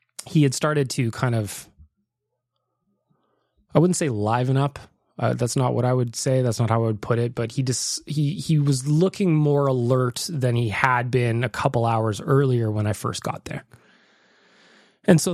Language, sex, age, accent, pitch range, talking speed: English, male, 20-39, American, 110-140 Hz, 190 wpm